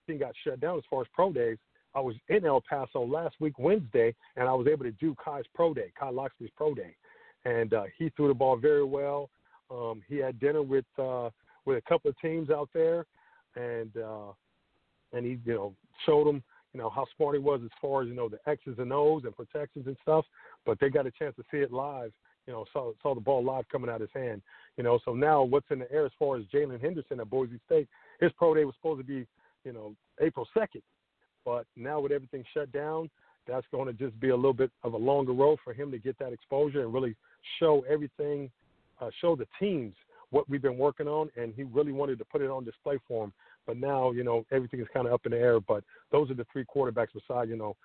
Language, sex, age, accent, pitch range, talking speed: English, male, 40-59, American, 125-155 Hz, 245 wpm